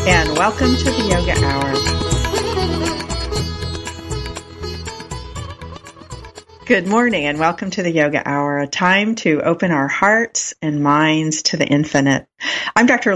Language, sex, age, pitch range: English, female, 50-69, 145-190 Hz